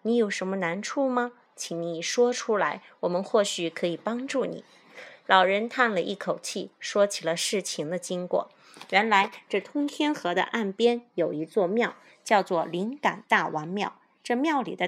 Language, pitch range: Chinese, 180-240 Hz